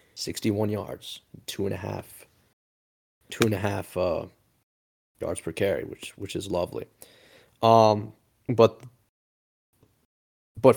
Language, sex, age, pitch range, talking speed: English, male, 30-49, 100-115 Hz, 115 wpm